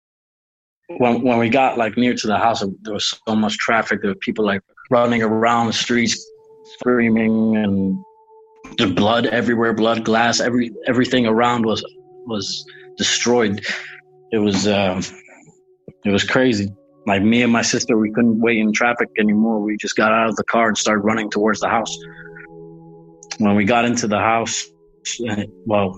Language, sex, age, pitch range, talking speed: English, male, 20-39, 105-120 Hz, 165 wpm